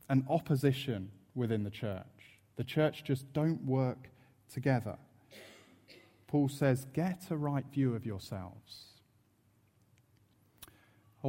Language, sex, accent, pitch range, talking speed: English, male, British, 110-145 Hz, 100 wpm